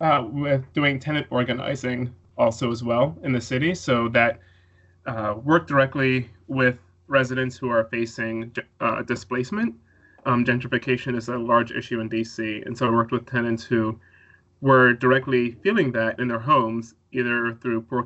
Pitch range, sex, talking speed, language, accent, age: 110-125 Hz, male, 160 wpm, English, American, 30-49